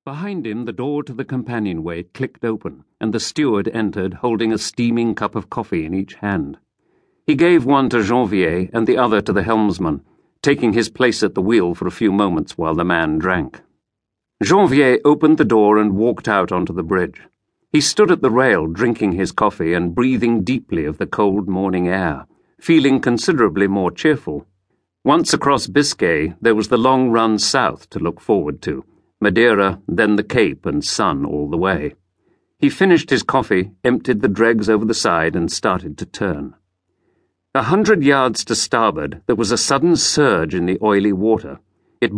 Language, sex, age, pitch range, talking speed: English, male, 50-69, 100-130 Hz, 185 wpm